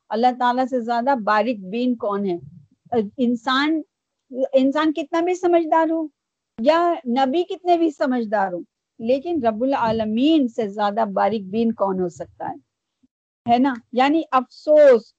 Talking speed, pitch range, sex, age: 140 wpm, 240-315 Hz, female, 50-69